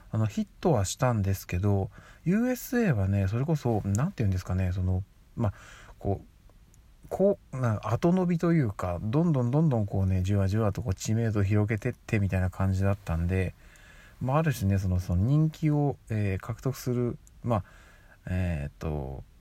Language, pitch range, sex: Japanese, 95-120 Hz, male